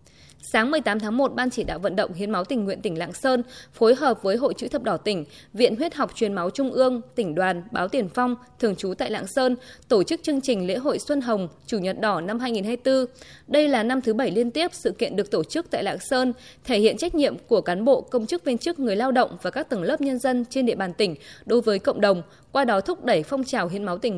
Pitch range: 205-260 Hz